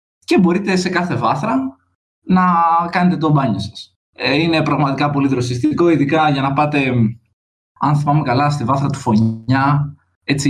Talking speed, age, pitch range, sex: 150 wpm, 20-39, 110-150 Hz, male